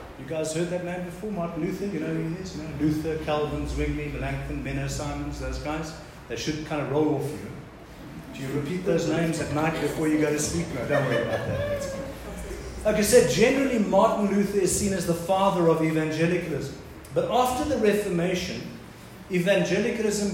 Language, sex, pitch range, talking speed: English, male, 145-185 Hz, 185 wpm